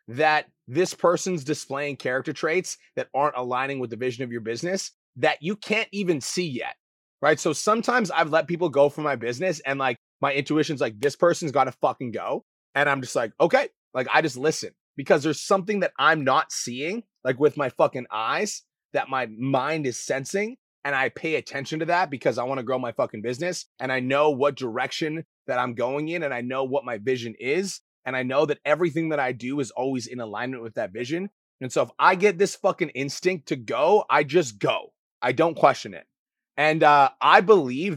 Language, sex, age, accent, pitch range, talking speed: English, male, 30-49, American, 130-175 Hz, 210 wpm